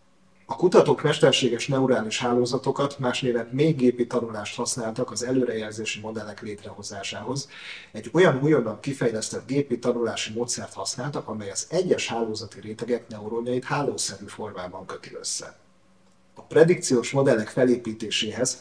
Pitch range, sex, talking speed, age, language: 110-130 Hz, male, 115 wpm, 40-59, Hungarian